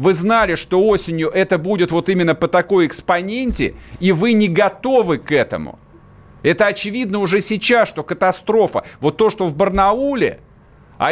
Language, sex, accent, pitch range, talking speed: Russian, male, native, 145-200 Hz, 155 wpm